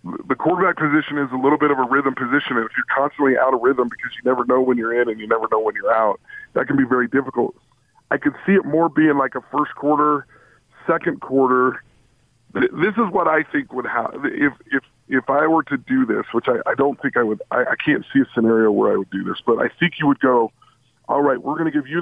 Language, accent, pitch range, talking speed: English, American, 130-155 Hz, 255 wpm